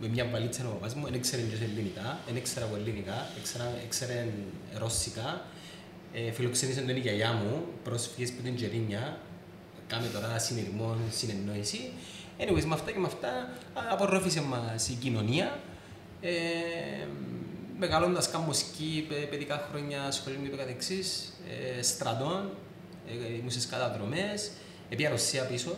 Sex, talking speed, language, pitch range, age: male, 90 wpm, Greek, 110-145 Hz, 30-49